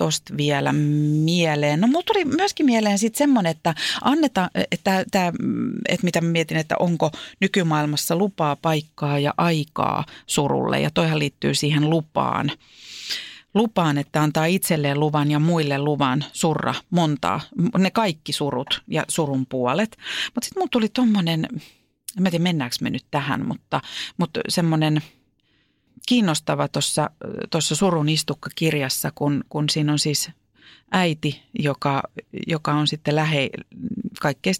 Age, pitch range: 40-59, 145-195 Hz